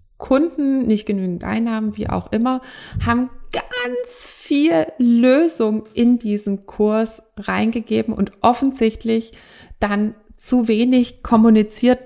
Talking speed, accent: 105 wpm, German